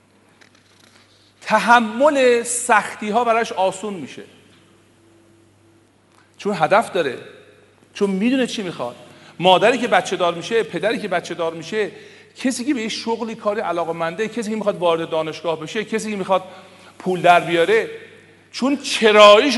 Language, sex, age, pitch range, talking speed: Persian, male, 40-59, 145-215 Hz, 140 wpm